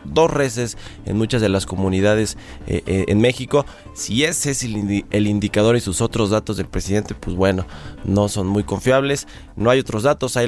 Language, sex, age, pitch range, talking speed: Spanish, male, 20-39, 100-120 Hz, 200 wpm